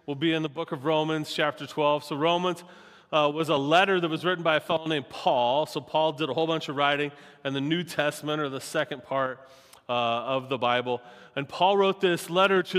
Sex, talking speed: male, 230 wpm